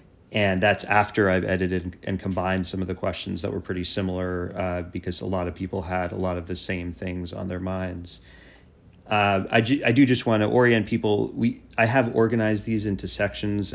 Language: English